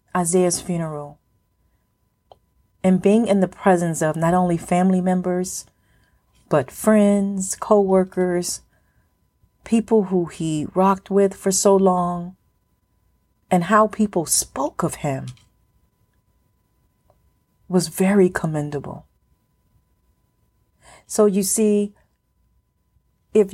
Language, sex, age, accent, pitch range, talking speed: English, female, 40-59, American, 140-195 Hz, 95 wpm